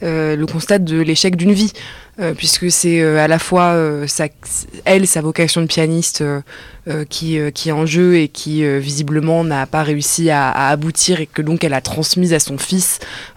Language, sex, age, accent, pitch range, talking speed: French, female, 20-39, French, 155-185 Hz, 220 wpm